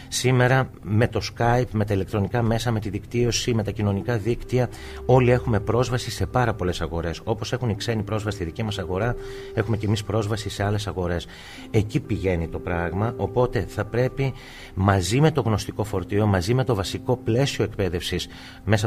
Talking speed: 180 wpm